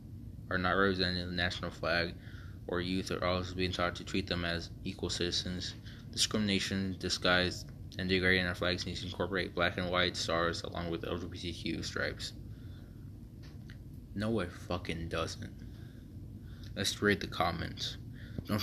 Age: 20-39